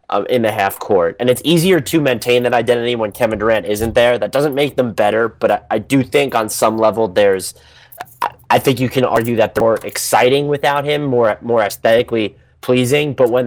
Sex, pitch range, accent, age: male, 105-125 Hz, American, 30-49